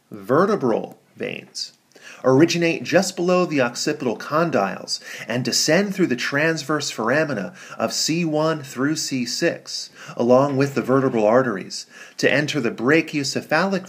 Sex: male